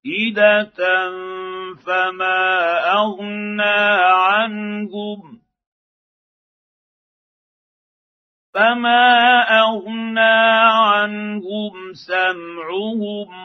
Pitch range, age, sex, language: 185-225 Hz, 50-69, male, Arabic